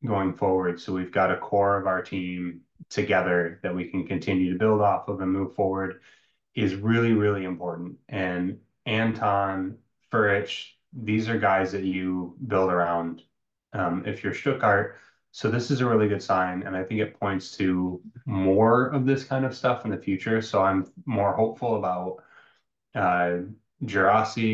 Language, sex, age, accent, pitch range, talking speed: English, male, 20-39, American, 95-110 Hz, 170 wpm